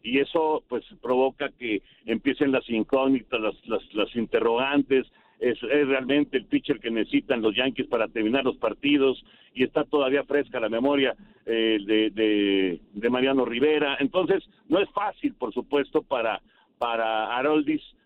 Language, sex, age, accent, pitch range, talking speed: Spanish, male, 50-69, Mexican, 125-185 Hz, 155 wpm